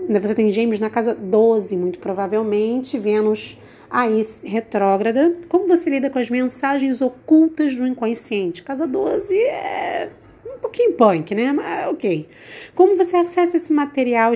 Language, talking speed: Portuguese, 145 wpm